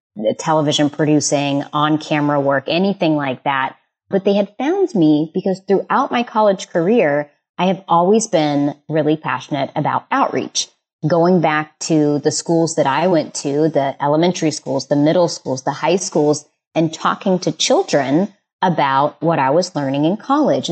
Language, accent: English, American